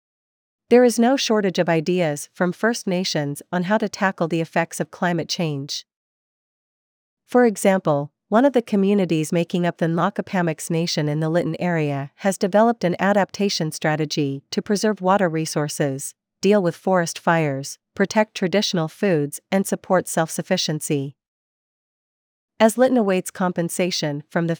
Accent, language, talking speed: American, English, 140 wpm